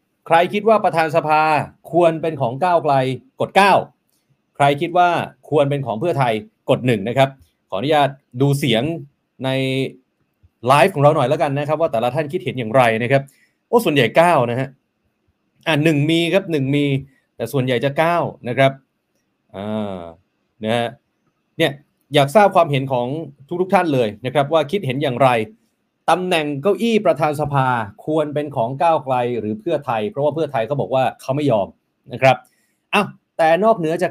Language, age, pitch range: Thai, 30-49, 125-165 Hz